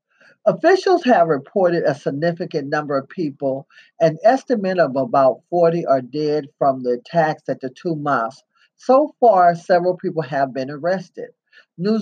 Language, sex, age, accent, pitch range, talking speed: English, male, 40-59, American, 135-180 Hz, 150 wpm